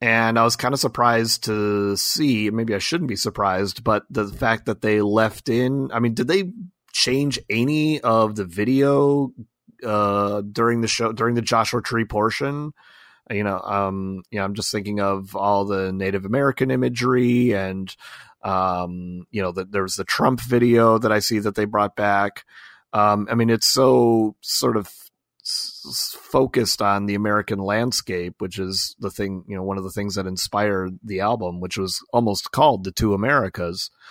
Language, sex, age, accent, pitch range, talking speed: English, male, 30-49, American, 100-125 Hz, 180 wpm